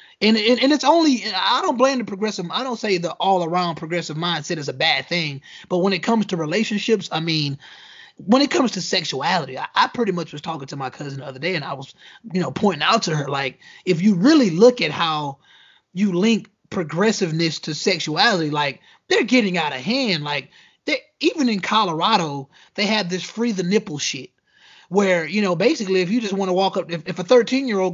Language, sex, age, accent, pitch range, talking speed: English, male, 20-39, American, 165-220 Hz, 220 wpm